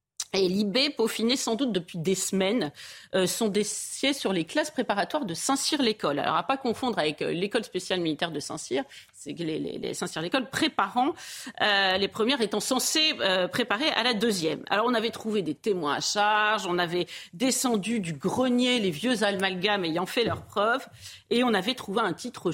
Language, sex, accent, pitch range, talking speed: French, female, French, 175-230 Hz, 190 wpm